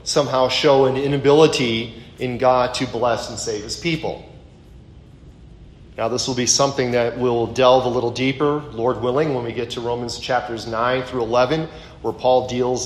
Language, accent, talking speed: English, American, 175 wpm